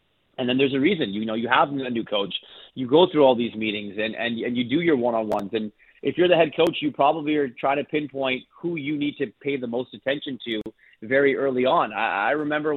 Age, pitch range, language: 30-49, 120-140 Hz, English